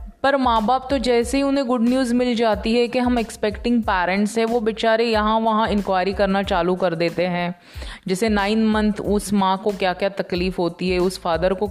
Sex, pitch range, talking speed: female, 185-220 Hz, 210 wpm